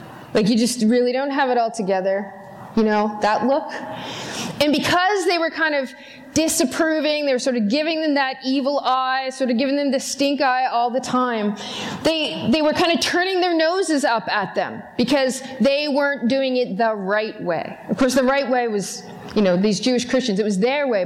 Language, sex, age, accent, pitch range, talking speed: English, female, 20-39, American, 235-300 Hz, 210 wpm